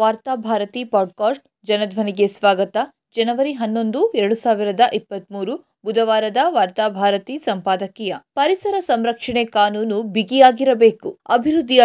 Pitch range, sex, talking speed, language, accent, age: 215-275 Hz, female, 90 wpm, Kannada, native, 20-39